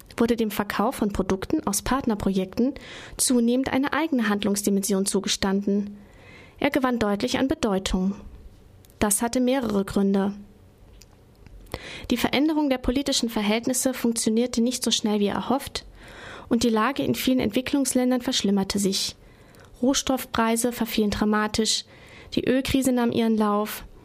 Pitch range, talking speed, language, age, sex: 205-255 Hz, 120 wpm, German, 20-39, female